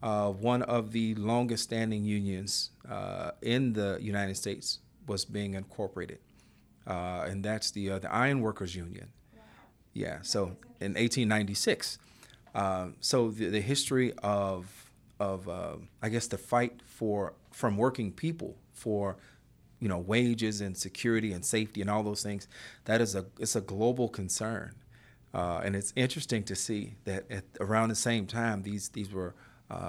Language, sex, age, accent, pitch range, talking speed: English, male, 40-59, American, 100-125 Hz, 160 wpm